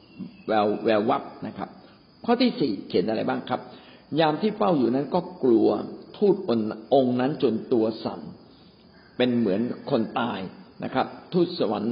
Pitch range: 125-185 Hz